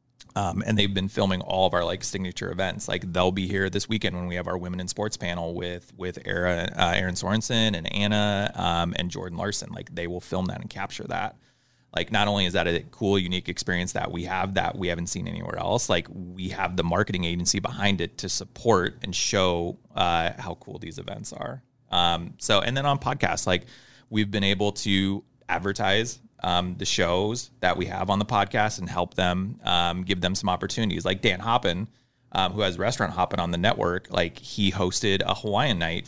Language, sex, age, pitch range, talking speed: English, male, 30-49, 90-105 Hz, 210 wpm